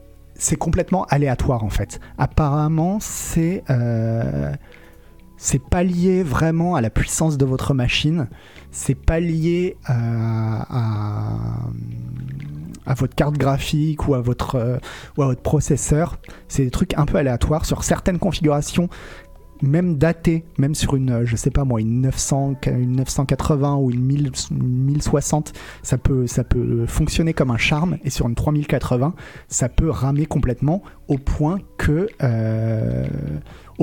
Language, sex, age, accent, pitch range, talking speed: French, male, 30-49, French, 120-155 Hz, 140 wpm